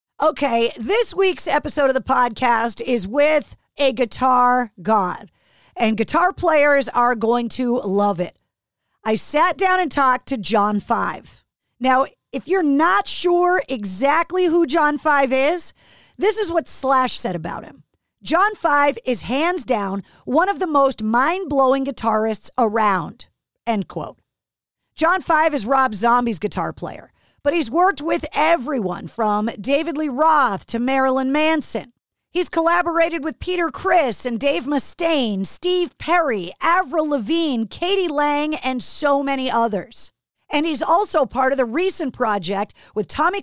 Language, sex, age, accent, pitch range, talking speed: English, female, 40-59, American, 235-325 Hz, 145 wpm